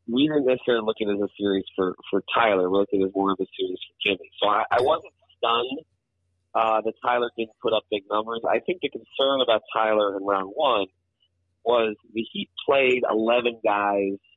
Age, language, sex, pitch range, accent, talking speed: 30-49, English, male, 95-120 Hz, American, 205 wpm